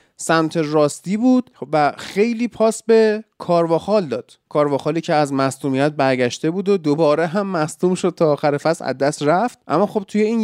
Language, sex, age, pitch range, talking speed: Persian, male, 30-49, 150-210 Hz, 165 wpm